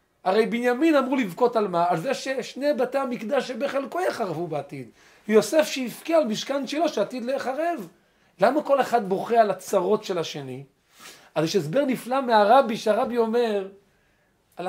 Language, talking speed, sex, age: Hebrew, 150 wpm, male, 40-59